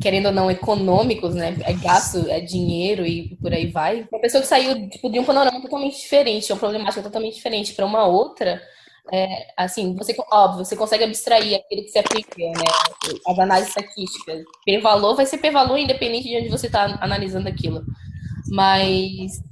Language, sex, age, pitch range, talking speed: Portuguese, female, 10-29, 185-225 Hz, 175 wpm